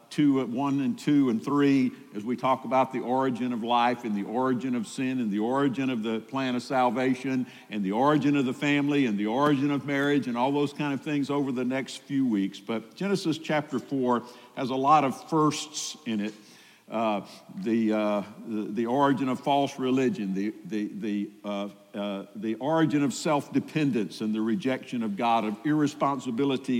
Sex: male